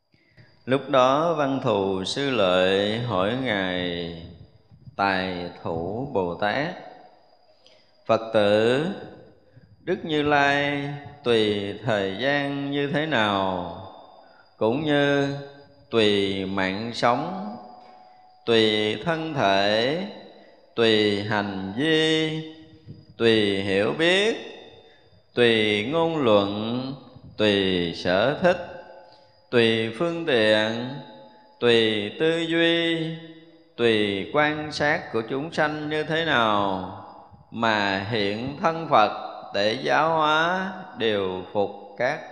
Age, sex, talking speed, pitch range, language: 20-39, male, 95 wpm, 105-150 Hz, Vietnamese